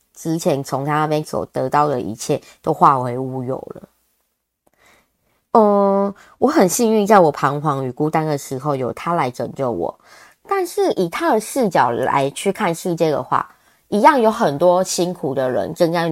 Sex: female